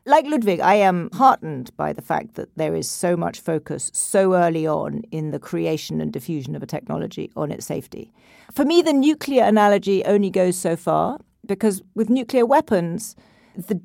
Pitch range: 170-215 Hz